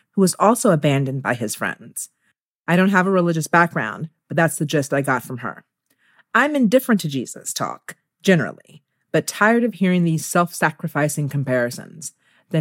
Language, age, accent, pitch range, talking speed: English, 40-59, American, 155-210 Hz, 165 wpm